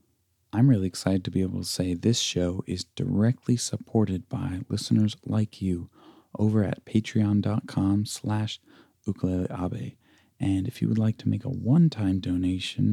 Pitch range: 100-125 Hz